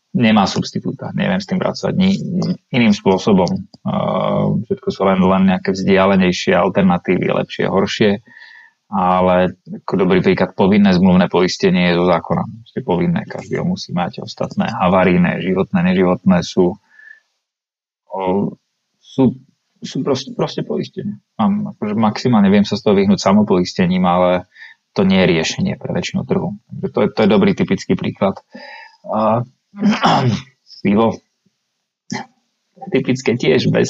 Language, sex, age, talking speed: Slovak, male, 30-49, 130 wpm